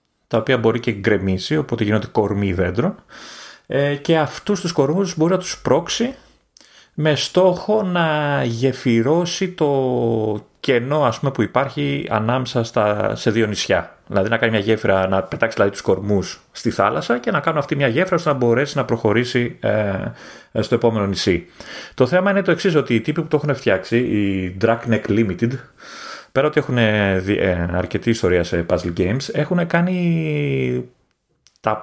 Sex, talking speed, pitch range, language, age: male, 165 wpm, 110-150 Hz, Greek, 30-49